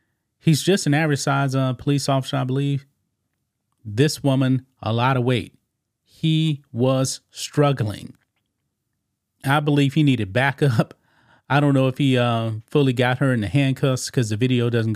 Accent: American